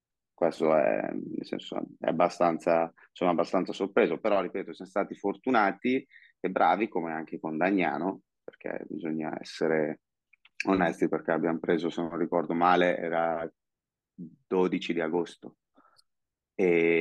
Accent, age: native, 30-49